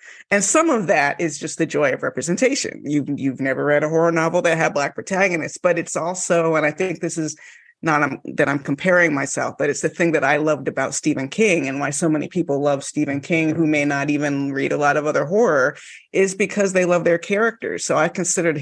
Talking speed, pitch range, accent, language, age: 230 wpm, 145-180 Hz, American, English, 30-49